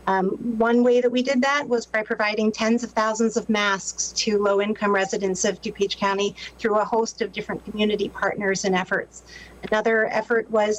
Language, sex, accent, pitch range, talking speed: English, female, American, 195-235 Hz, 190 wpm